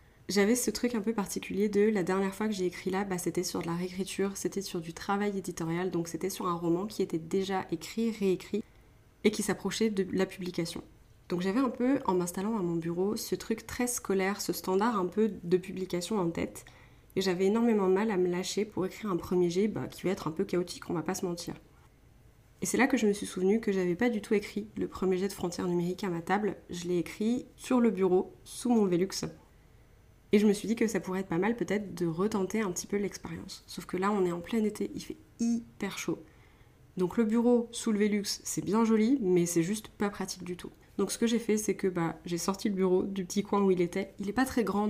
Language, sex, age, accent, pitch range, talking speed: French, female, 20-39, French, 175-210 Hz, 250 wpm